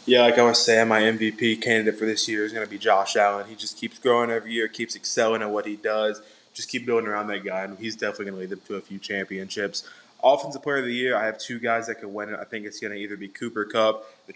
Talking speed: 290 wpm